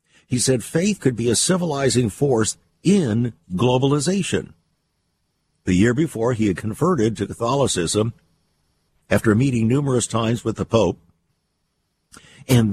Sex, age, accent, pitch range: male, 50-69, American, 105-145 Hz